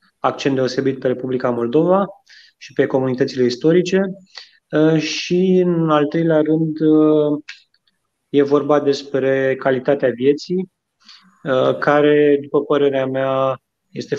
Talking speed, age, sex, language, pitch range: 100 wpm, 20-39, male, Romanian, 130-150 Hz